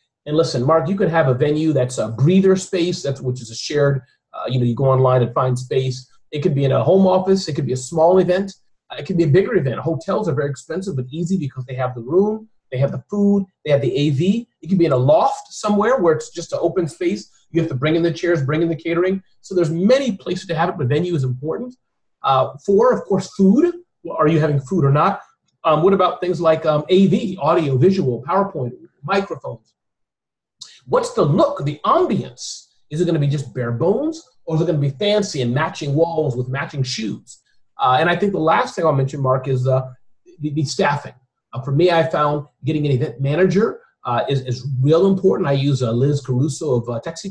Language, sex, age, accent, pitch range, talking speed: English, male, 30-49, American, 130-185 Hz, 230 wpm